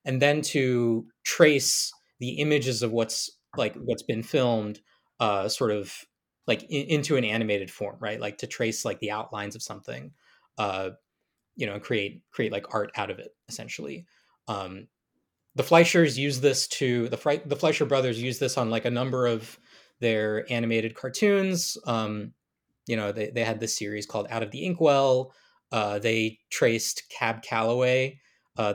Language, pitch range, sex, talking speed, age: English, 110-140 Hz, male, 170 wpm, 20-39